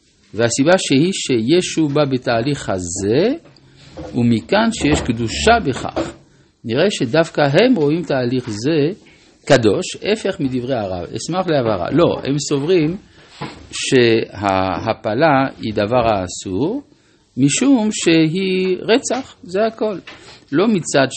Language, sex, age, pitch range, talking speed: Hebrew, male, 50-69, 105-155 Hz, 100 wpm